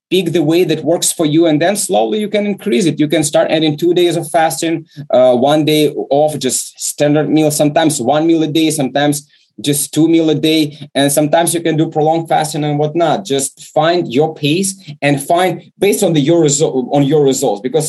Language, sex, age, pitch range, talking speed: English, male, 30-49, 135-165 Hz, 215 wpm